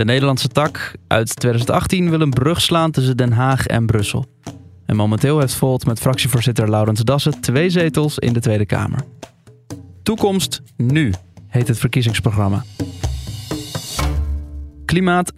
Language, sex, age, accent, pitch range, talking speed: Dutch, male, 20-39, Dutch, 115-150 Hz, 135 wpm